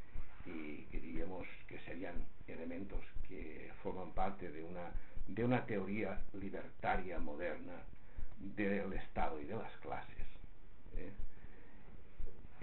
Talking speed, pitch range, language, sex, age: 110 wpm, 90-110 Hz, Spanish, male, 60-79